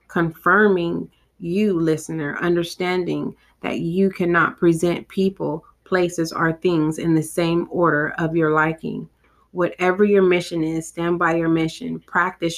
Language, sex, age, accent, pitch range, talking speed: English, female, 30-49, American, 160-185 Hz, 135 wpm